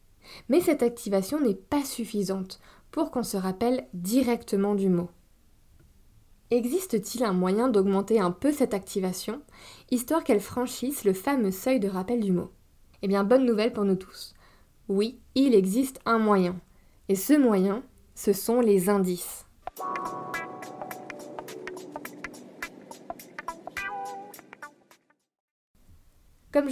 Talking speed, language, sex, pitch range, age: 115 wpm, French, female, 190-250 Hz, 20-39